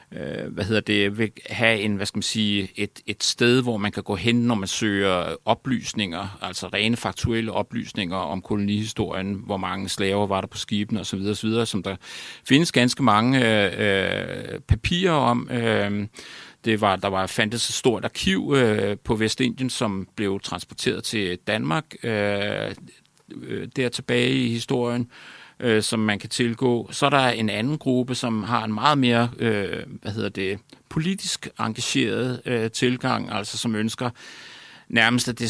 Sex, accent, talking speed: male, native, 155 wpm